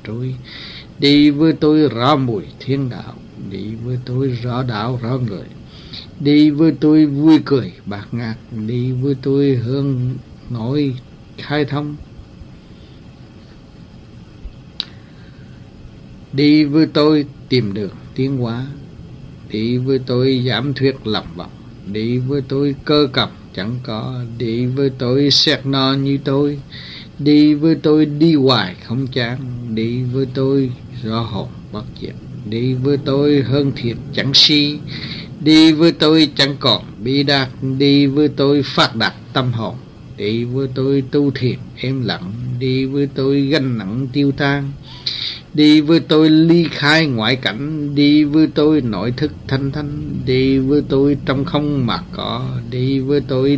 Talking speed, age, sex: 145 wpm, 60-79, male